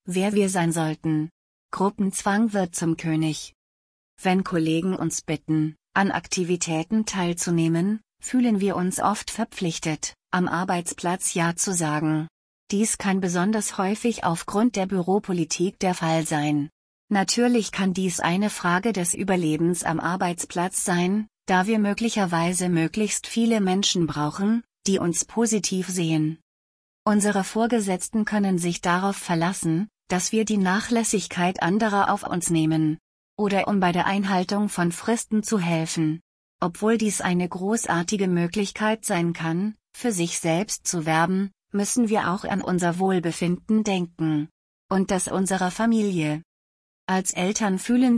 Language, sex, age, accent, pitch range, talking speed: German, female, 30-49, German, 170-205 Hz, 130 wpm